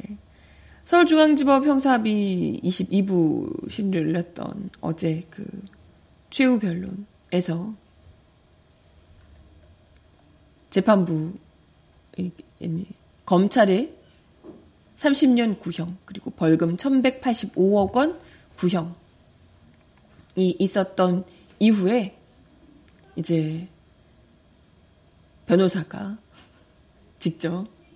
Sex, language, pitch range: female, Korean, 160-215 Hz